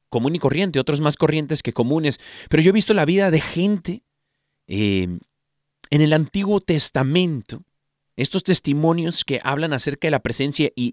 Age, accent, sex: 40-59, Mexican, male